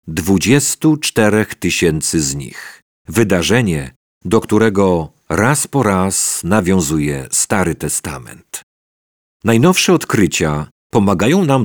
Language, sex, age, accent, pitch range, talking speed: Polish, male, 50-69, native, 90-115 Hz, 90 wpm